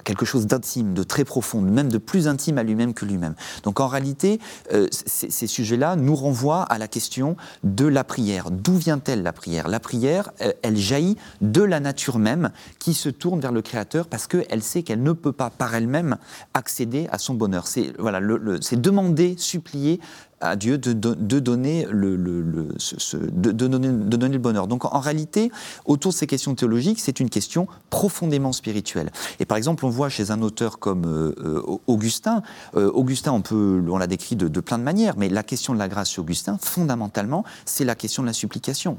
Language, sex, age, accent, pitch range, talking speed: French, male, 30-49, French, 105-155 Hz, 190 wpm